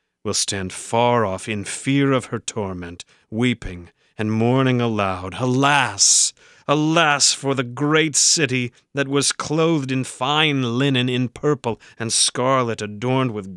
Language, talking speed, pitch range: English, 135 wpm, 105-135 Hz